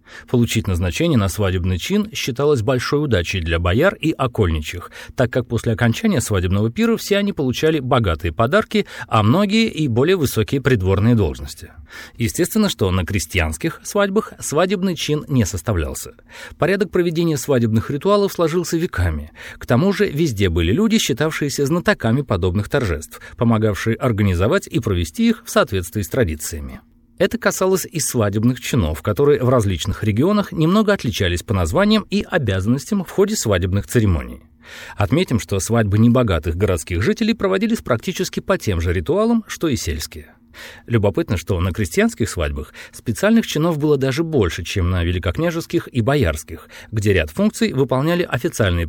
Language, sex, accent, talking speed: Russian, male, native, 145 wpm